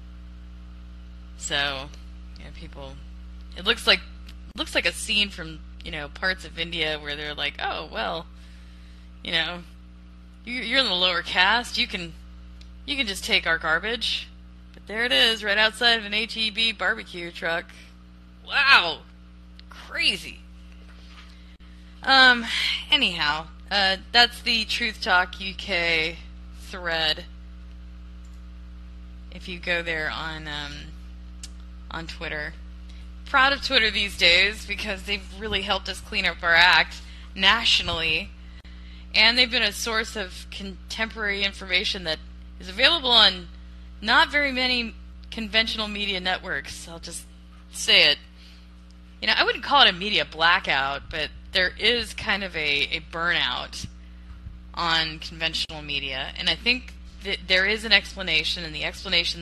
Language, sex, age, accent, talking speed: English, female, 20-39, American, 135 wpm